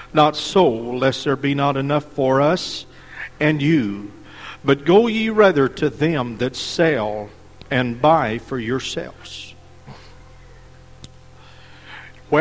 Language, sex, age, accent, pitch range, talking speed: English, male, 50-69, American, 130-170 Hz, 115 wpm